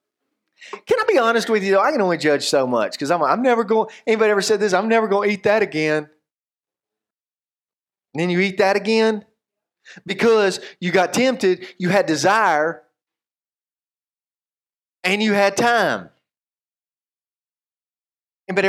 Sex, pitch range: male, 150-225 Hz